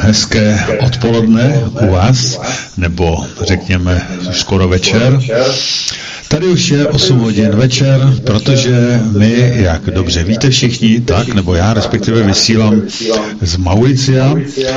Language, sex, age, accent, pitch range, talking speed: Czech, male, 50-69, native, 95-120 Hz, 110 wpm